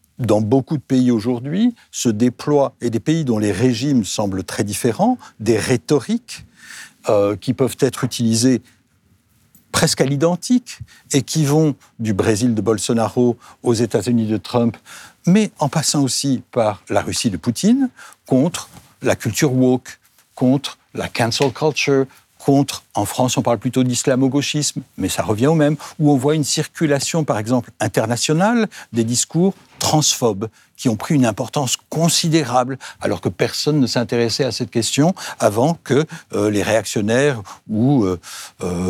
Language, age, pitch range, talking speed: French, 60-79, 115-150 Hz, 155 wpm